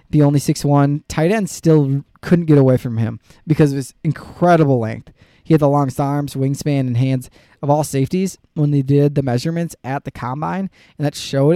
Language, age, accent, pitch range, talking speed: English, 20-39, American, 130-155 Hz, 195 wpm